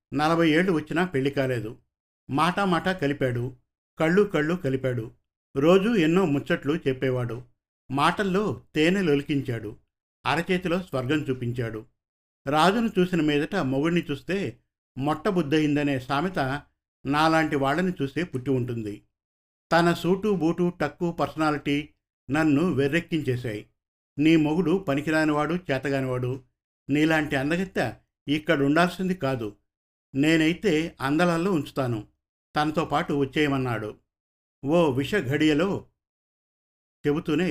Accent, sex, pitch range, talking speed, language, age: native, male, 130-165 Hz, 90 wpm, Telugu, 50-69